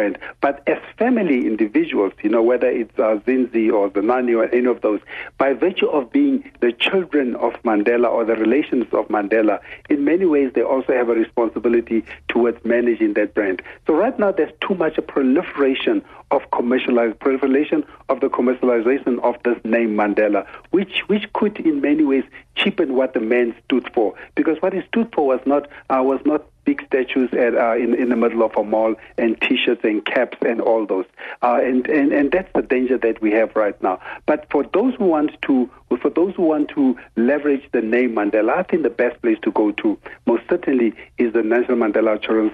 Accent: South African